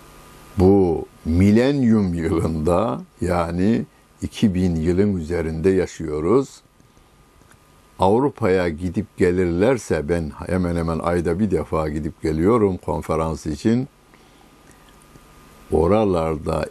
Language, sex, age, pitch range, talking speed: Turkish, male, 60-79, 80-105 Hz, 75 wpm